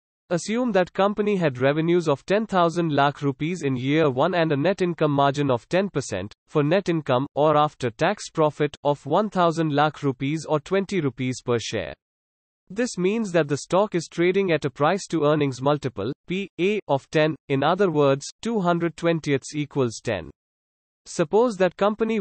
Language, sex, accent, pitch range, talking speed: English, male, Indian, 140-180 Hz, 165 wpm